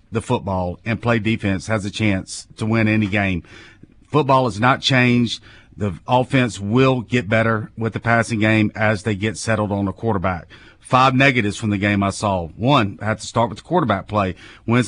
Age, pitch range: 40-59, 105-125 Hz